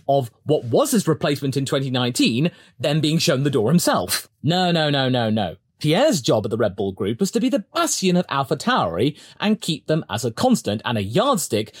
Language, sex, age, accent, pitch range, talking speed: English, male, 30-49, British, 125-185 Hz, 215 wpm